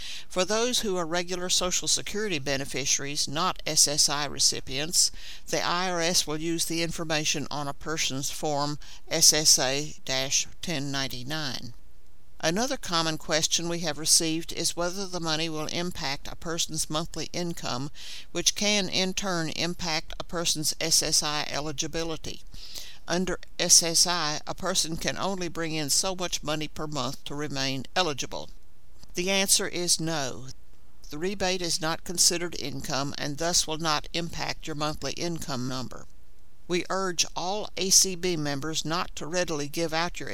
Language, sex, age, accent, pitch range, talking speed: English, male, 50-69, American, 145-175 Hz, 140 wpm